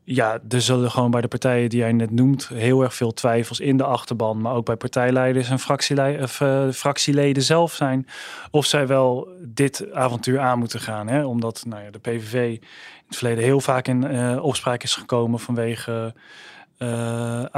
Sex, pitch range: male, 125-145 Hz